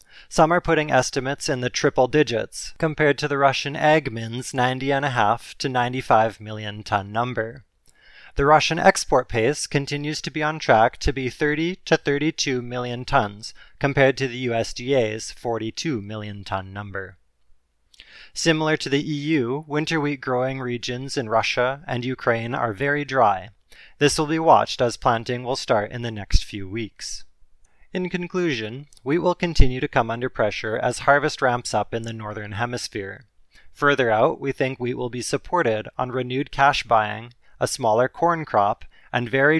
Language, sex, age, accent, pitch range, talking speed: English, male, 20-39, American, 110-145 Hz, 160 wpm